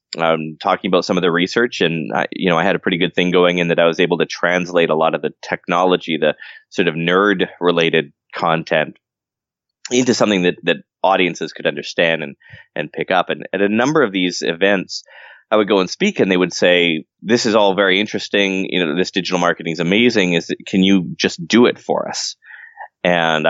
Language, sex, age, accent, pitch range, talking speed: English, male, 20-39, American, 80-100 Hz, 210 wpm